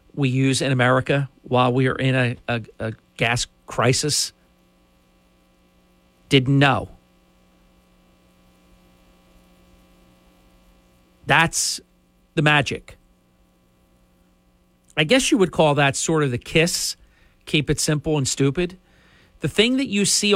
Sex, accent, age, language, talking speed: male, American, 50-69, English, 110 wpm